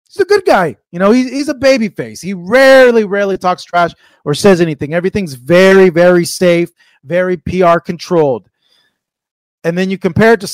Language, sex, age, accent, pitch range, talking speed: English, male, 30-49, American, 170-225 Hz, 175 wpm